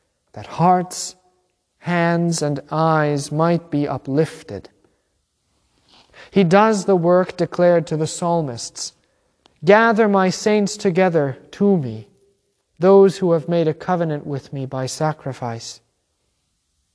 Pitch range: 120-170 Hz